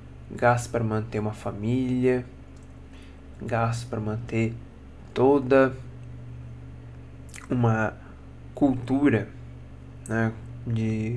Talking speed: 70 wpm